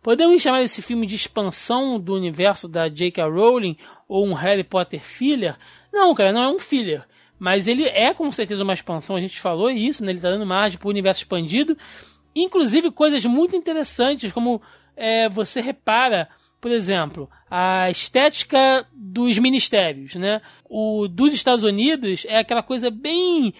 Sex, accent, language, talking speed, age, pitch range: male, Brazilian, Portuguese, 160 wpm, 20-39, 185-240 Hz